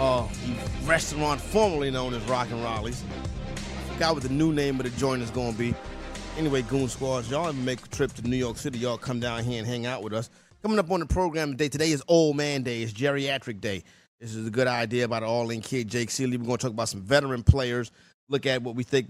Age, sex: 30-49, male